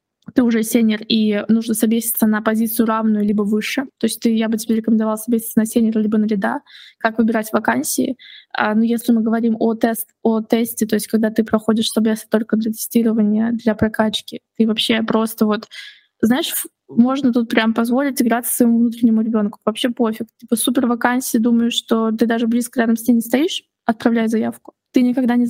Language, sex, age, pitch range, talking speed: English, female, 20-39, 220-240 Hz, 190 wpm